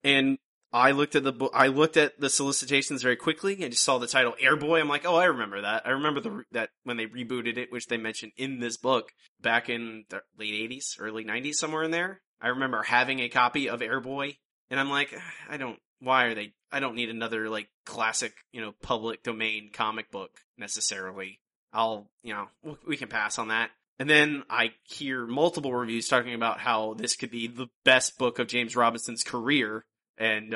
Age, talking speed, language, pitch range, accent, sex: 20-39, 210 wpm, English, 115-140 Hz, American, male